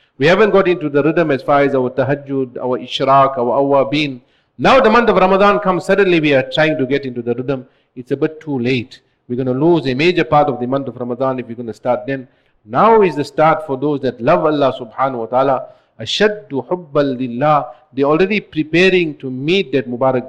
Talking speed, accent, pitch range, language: 220 wpm, Indian, 130-165 Hz, English